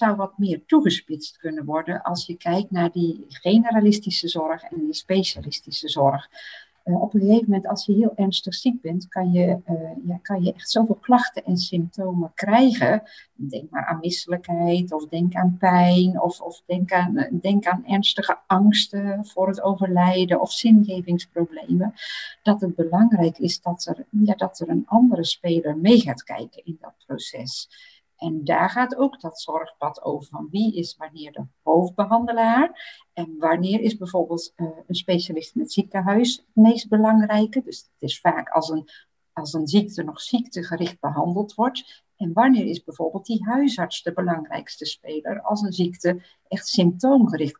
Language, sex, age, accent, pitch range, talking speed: Dutch, female, 50-69, Dutch, 170-220 Hz, 160 wpm